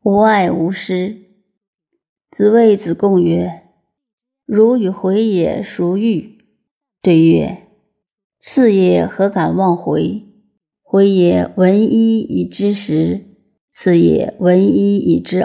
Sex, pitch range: female, 185-215 Hz